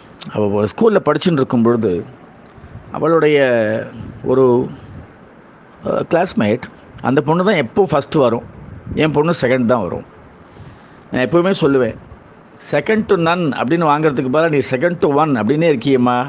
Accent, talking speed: native, 125 wpm